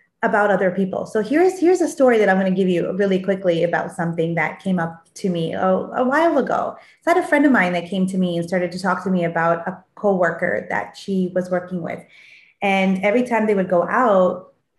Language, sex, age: English, female, 30-49